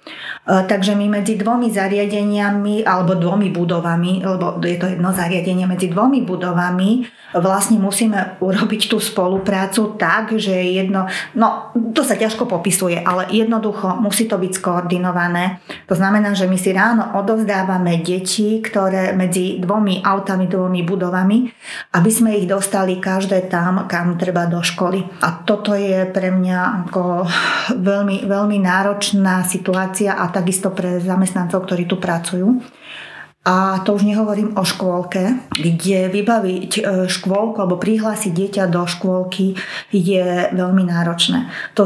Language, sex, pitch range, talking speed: Slovak, female, 185-210 Hz, 135 wpm